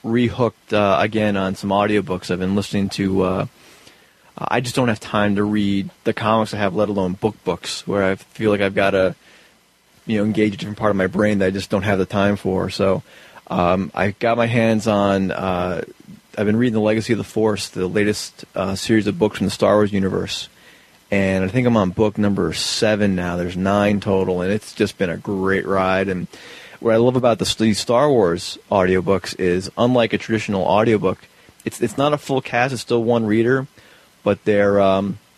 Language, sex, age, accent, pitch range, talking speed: English, male, 30-49, American, 95-110 Hz, 210 wpm